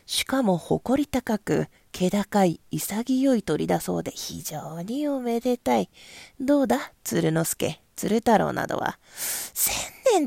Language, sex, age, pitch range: Japanese, female, 40-59, 190-285 Hz